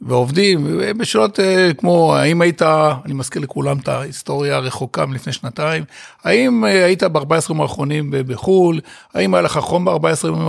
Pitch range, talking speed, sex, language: 135-170 Hz, 150 wpm, male, Hebrew